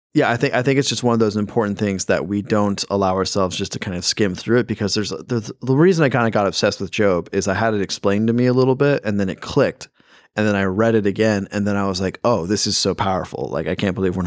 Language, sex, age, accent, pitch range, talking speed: English, male, 20-39, American, 100-125 Hz, 300 wpm